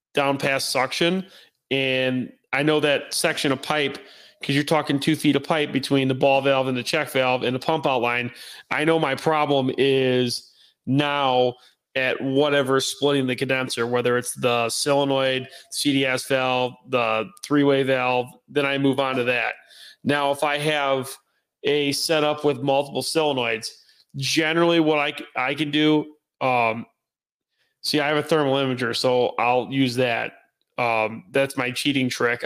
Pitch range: 125-145 Hz